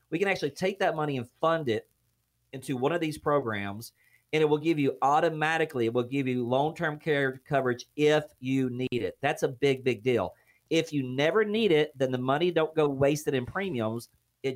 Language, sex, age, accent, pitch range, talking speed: English, male, 40-59, American, 120-150 Hz, 205 wpm